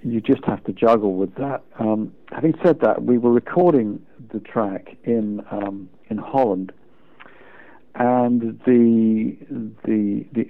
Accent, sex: British, male